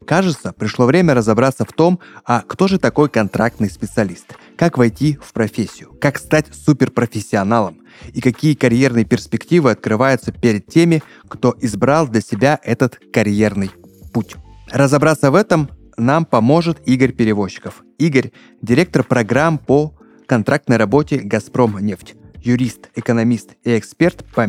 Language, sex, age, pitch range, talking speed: Russian, male, 20-39, 110-145 Hz, 130 wpm